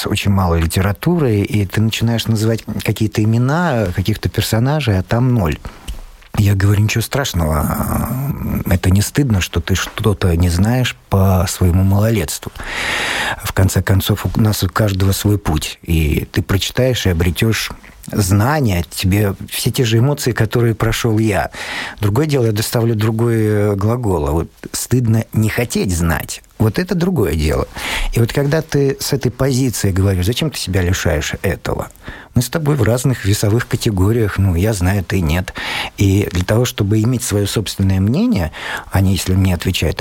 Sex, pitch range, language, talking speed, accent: male, 95-115 Hz, Russian, 155 wpm, native